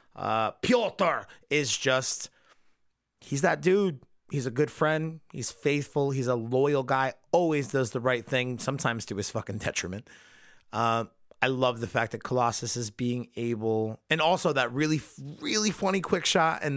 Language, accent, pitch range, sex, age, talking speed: English, American, 120-155 Hz, male, 30-49, 175 wpm